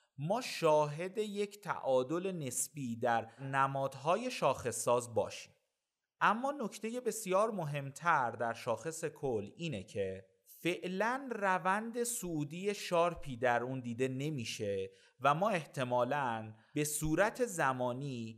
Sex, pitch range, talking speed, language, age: male, 130-190 Hz, 110 wpm, Persian, 30-49